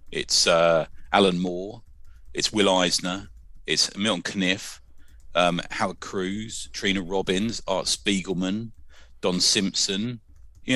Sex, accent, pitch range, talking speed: male, British, 80-100 Hz, 110 wpm